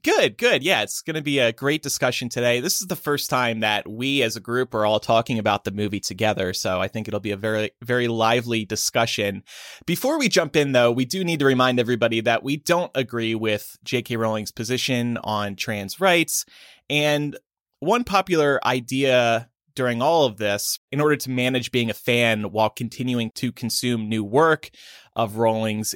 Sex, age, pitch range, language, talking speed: male, 30-49, 110-145 Hz, English, 190 wpm